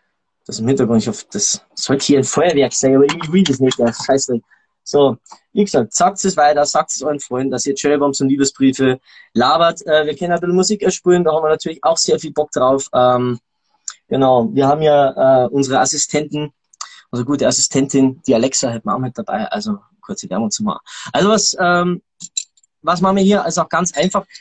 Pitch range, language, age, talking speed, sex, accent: 125-180 Hz, German, 20-39, 200 wpm, male, German